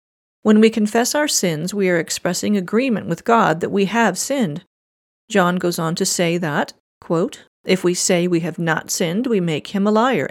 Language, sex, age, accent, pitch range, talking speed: English, female, 40-59, American, 180-230 Hz, 200 wpm